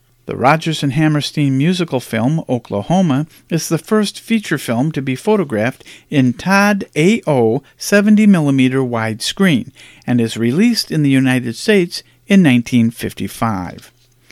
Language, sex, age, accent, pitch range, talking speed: English, male, 50-69, American, 125-195 Hz, 120 wpm